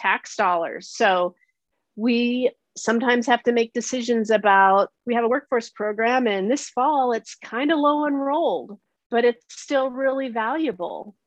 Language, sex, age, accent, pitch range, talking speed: English, female, 40-59, American, 195-255 Hz, 150 wpm